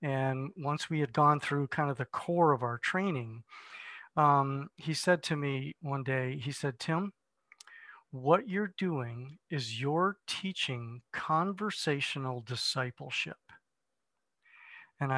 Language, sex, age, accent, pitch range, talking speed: English, male, 50-69, American, 135-170 Hz, 125 wpm